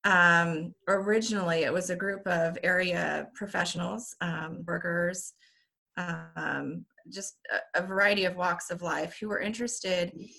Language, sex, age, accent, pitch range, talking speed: English, female, 30-49, American, 170-195 Hz, 135 wpm